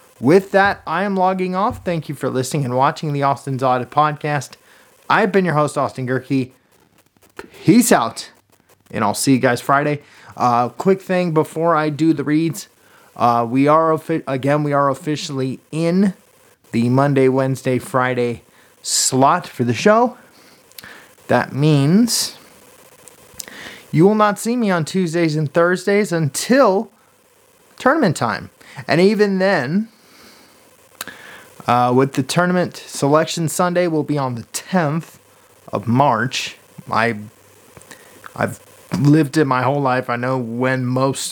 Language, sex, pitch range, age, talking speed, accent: English, male, 125-175 Hz, 30-49, 140 wpm, American